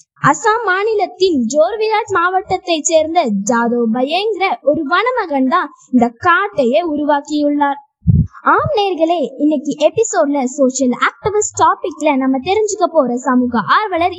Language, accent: Tamil, native